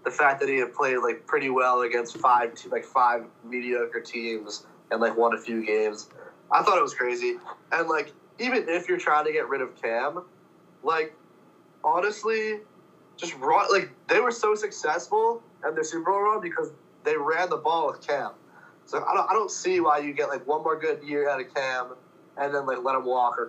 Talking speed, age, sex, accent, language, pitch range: 210 wpm, 20-39, male, American, English, 130-215 Hz